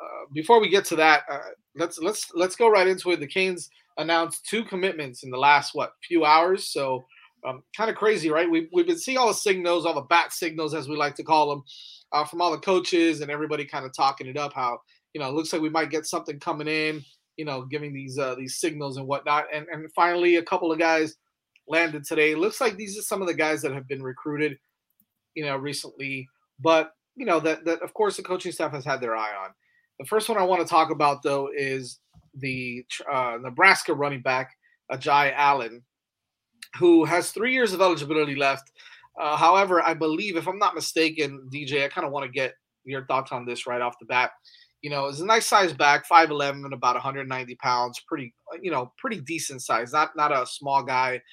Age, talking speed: 30-49, 220 wpm